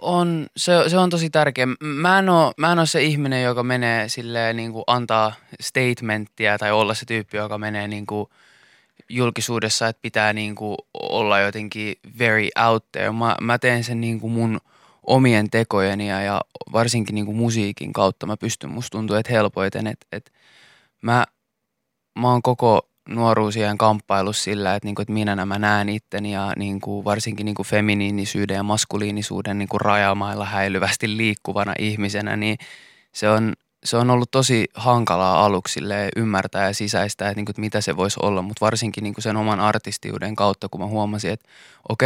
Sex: male